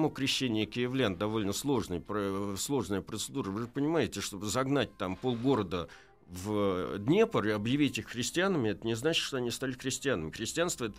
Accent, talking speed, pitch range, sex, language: native, 155 wpm, 95-135 Hz, male, Russian